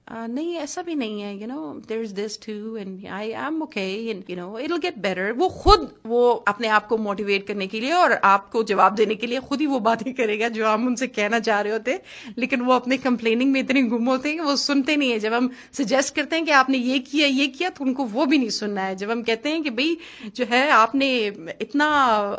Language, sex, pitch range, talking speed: English, female, 210-280 Hz, 150 wpm